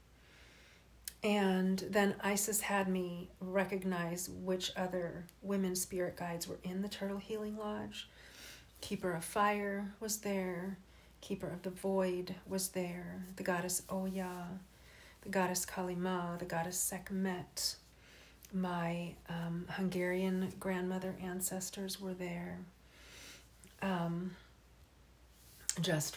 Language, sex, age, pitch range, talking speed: English, female, 40-59, 165-190 Hz, 105 wpm